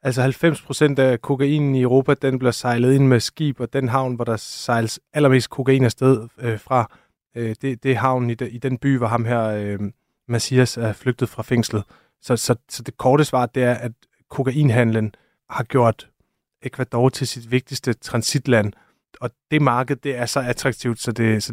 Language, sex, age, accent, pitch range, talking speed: Danish, male, 30-49, native, 115-130 Hz, 190 wpm